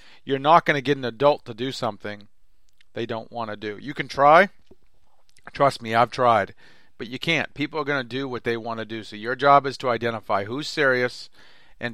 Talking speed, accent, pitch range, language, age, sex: 220 wpm, American, 115-140 Hz, English, 40-59, male